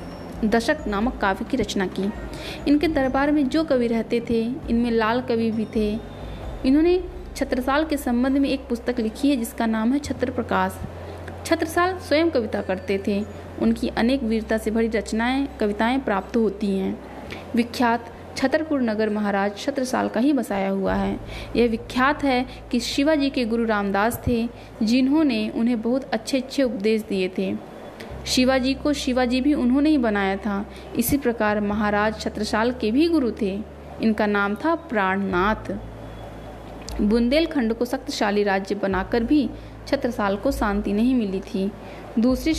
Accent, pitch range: native, 210-270 Hz